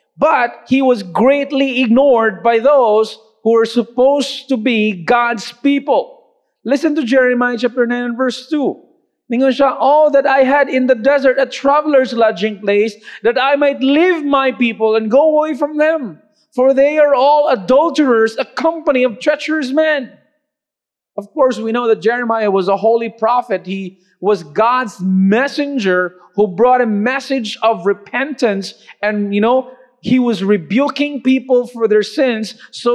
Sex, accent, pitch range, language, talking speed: male, Filipino, 215-275 Hz, English, 155 wpm